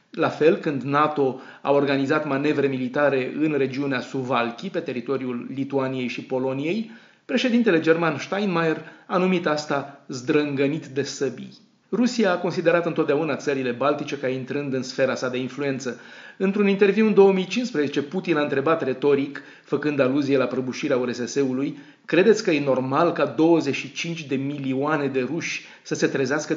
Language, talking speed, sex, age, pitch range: Romanian, 145 wpm, male, 30-49, 130-155 Hz